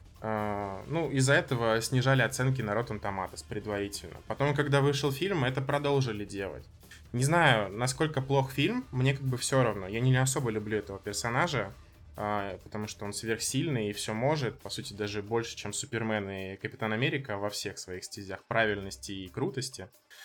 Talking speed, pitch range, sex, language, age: 170 wpm, 105-135 Hz, male, Russian, 20-39